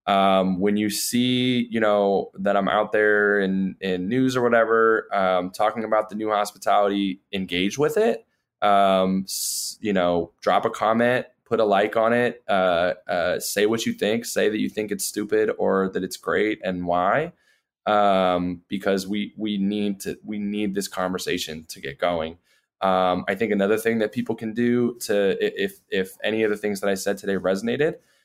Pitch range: 90-105 Hz